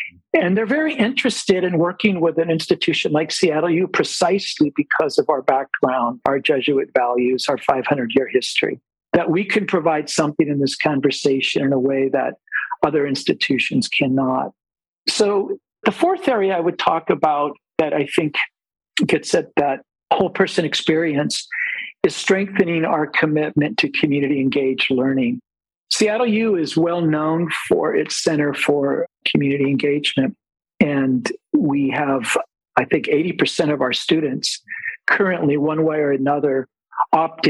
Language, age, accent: English, 50-69, American